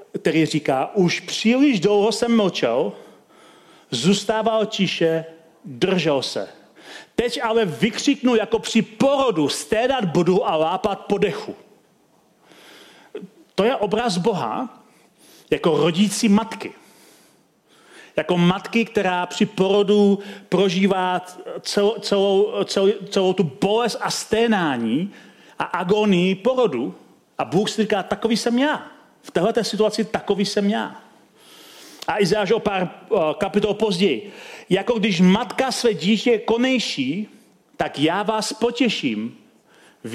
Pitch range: 185-225 Hz